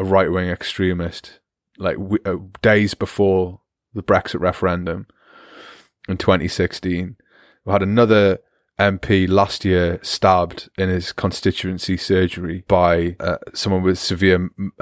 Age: 20-39